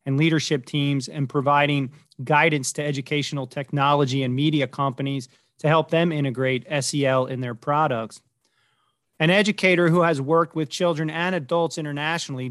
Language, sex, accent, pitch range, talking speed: English, male, American, 135-155 Hz, 145 wpm